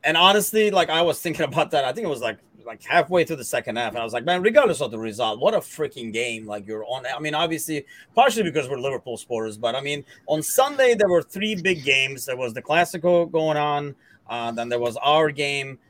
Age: 30-49